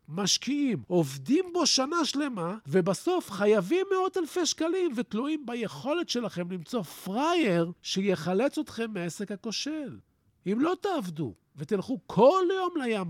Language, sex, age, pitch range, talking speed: Hebrew, male, 50-69, 185-275 Hz, 120 wpm